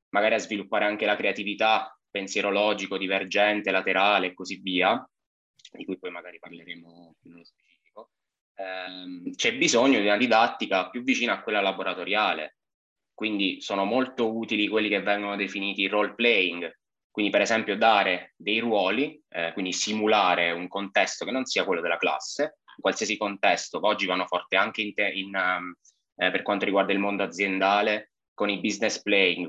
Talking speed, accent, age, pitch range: 165 wpm, native, 20-39, 95-110 Hz